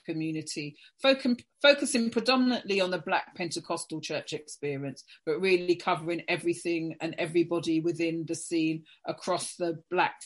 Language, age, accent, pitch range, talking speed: English, 40-59, British, 165-195 Hz, 125 wpm